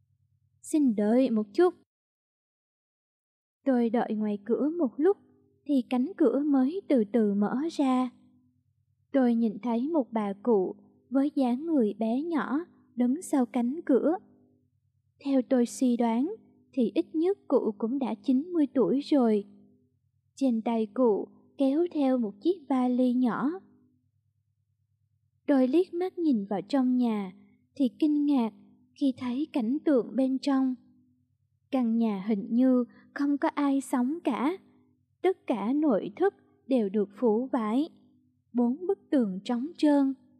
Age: 20-39